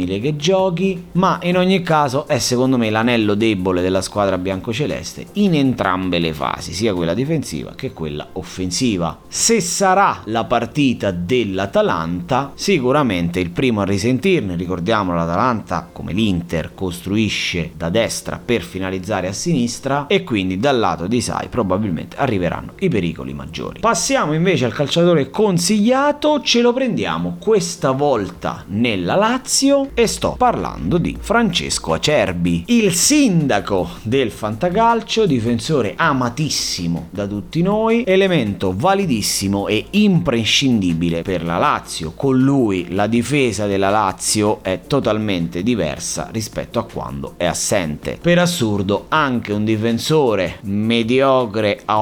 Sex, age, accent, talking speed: male, 30-49, native, 130 wpm